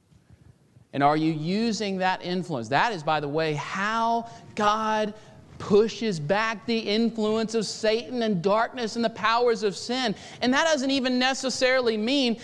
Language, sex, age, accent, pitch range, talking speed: English, male, 40-59, American, 140-210 Hz, 155 wpm